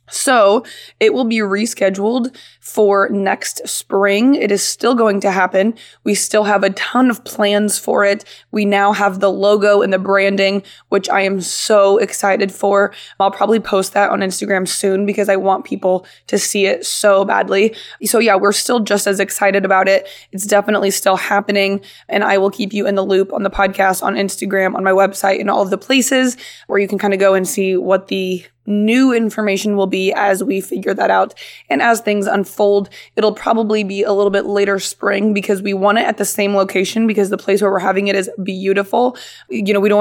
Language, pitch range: English, 195-210 Hz